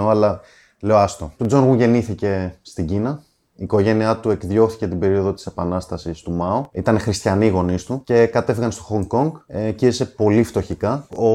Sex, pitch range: male, 100-120 Hz